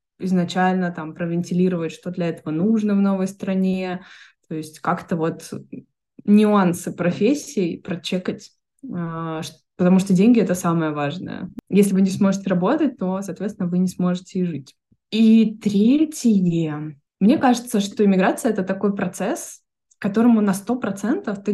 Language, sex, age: Russian, female, 20-39